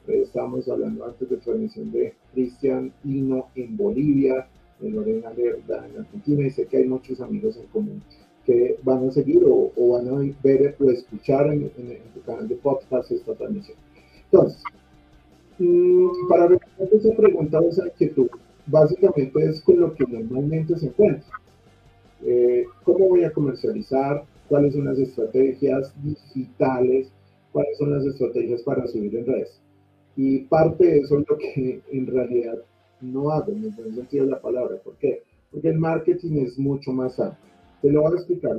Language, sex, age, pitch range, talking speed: Spanish, male, 40-59, 130-180 Hz, 165 wpm